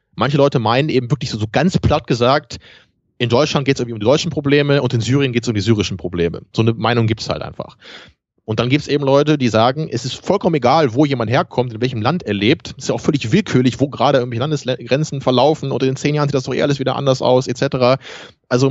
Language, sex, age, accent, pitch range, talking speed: German, male, 30-49, German, 115-140 Hz, 255 wpm